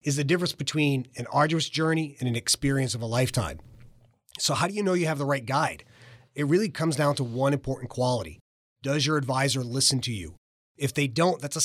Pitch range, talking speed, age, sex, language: 125-165 Hz, 215 wpm, 30-49, male, English